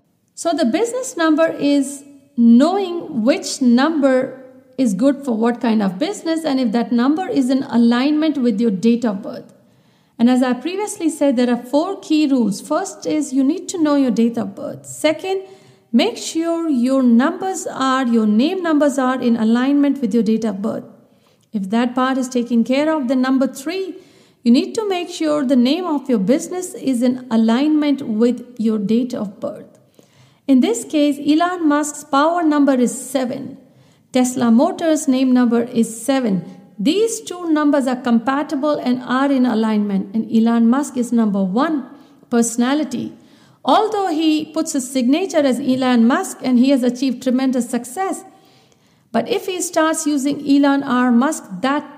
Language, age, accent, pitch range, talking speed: Hindi, 50-69, native, 240-300 Hz, 170 wpm